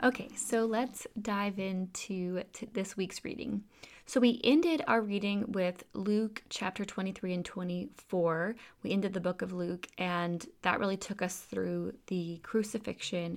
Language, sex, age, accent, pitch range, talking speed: English, female, 20-39, American, 180-225 Hz, 150 wpm